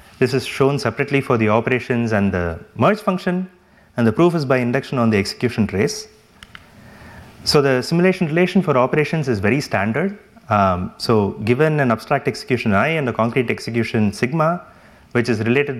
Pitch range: 110-150 Hz